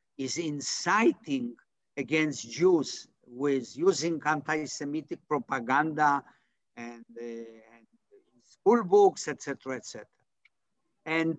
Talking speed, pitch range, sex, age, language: 100 wpm, 150-215 Hz, male, 50-69, English